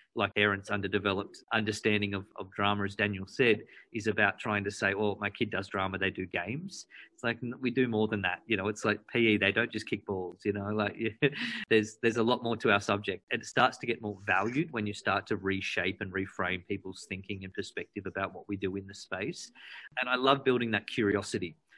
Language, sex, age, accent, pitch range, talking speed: English, male, 30-49, Australian, 100-110 Hz, 225 wpm